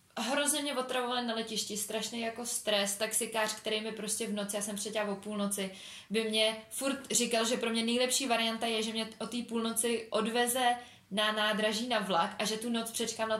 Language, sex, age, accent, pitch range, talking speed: Czech, female, 20-39, native, 205-245 Hz, 195 wpm